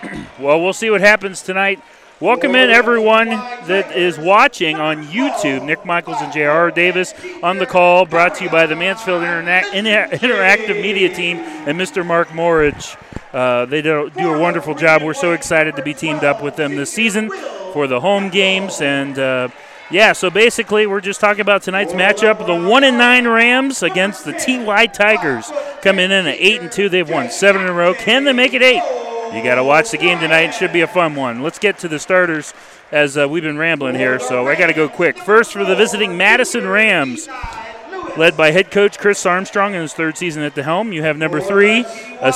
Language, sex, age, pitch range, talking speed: English, male, 30-49, 165-210 Hz, 205 wpm